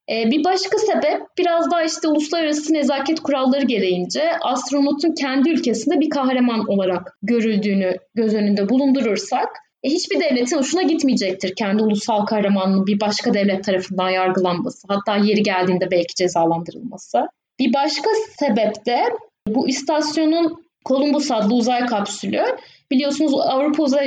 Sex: female